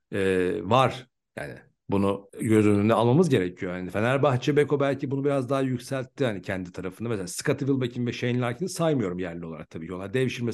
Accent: native